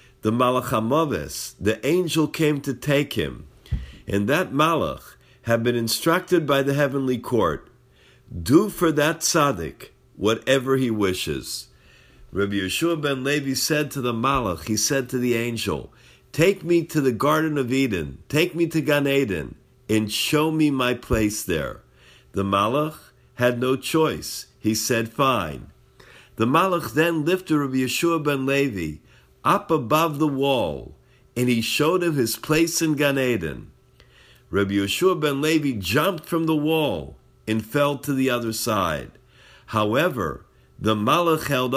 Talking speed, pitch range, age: 145 wpm, 115-150 Hz, 50-69